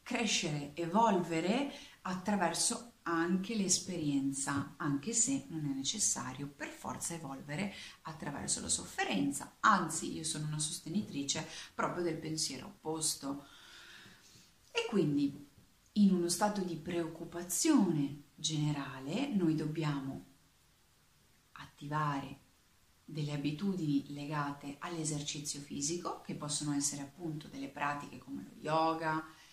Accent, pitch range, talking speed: native, 145-185 Hz, 100 wpm